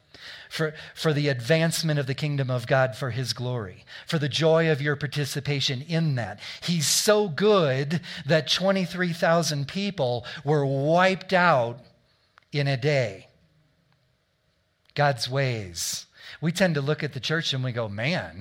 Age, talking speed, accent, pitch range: 40-59, 145 wpm, American, 120-160 Hz